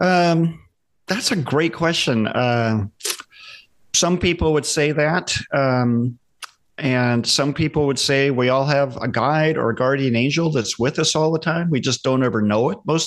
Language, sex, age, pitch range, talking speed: English, male, 40-59, 125-150 Hz, 180 wpm